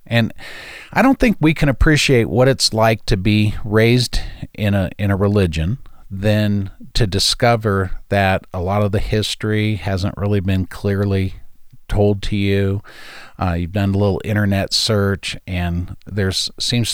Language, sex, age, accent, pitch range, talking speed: English, male, 50-69, American, 95-115 Hz, 155 wpm